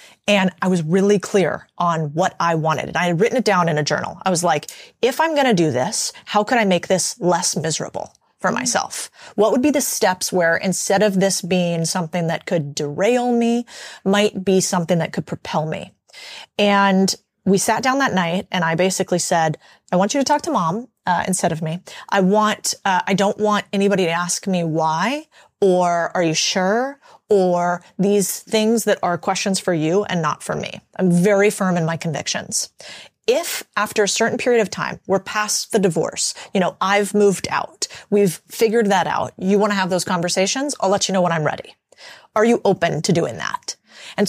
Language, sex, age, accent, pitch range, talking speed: English, female, 30-49, American, 180-220 Hz, 205 wpm